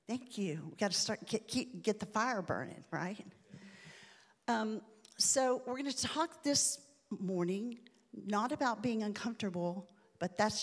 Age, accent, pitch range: 50-69, American, 180-240 Hz